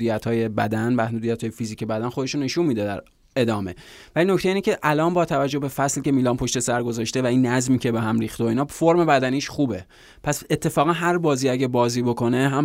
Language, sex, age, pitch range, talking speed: Persian, male, 20-39, 125-145 Hz, 225 wpm